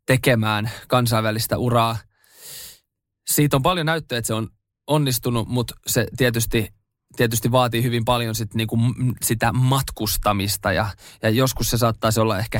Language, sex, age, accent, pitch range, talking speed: Finnish, male, 20-39, native, 110-130 Hz, 140 wpm